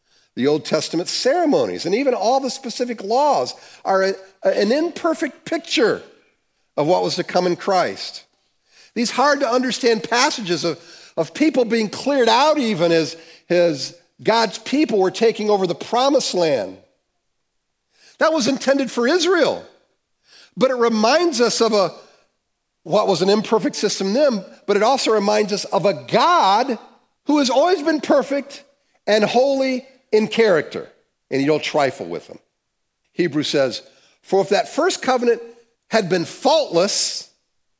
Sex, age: male, 50-69